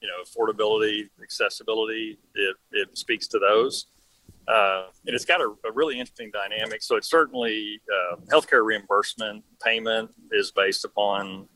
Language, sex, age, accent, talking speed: English, male, 40-59, American, 145 wpm